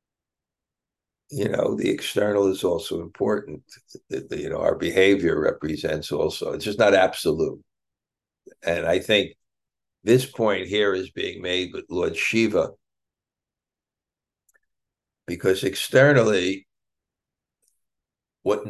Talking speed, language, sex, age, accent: 110 wpm, English, male, 60-79, American